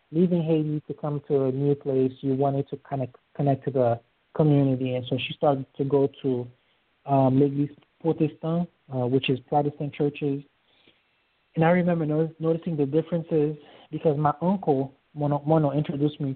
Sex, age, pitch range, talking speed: male, 30-49, 130-150 Hz, 165 wpm